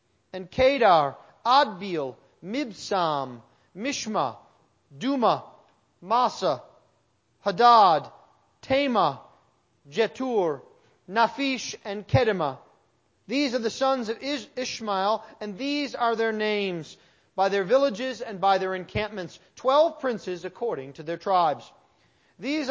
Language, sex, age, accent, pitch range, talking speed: English, male, 40-59, American, 180-255 Hz, 100 wpm